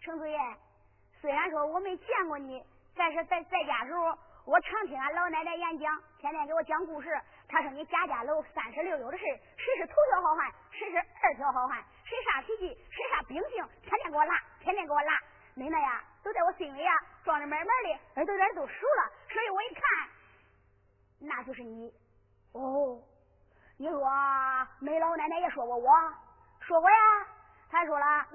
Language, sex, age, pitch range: Chinese, male, 30-49, 290-395 Hz